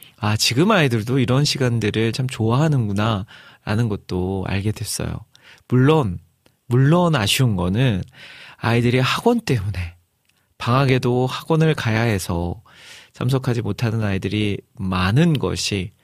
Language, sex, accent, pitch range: Korean, male, native, 105-135 Hz